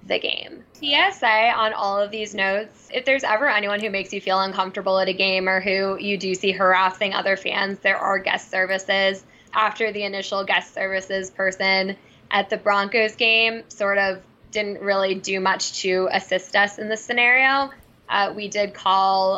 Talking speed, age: 180 wpm, 10-29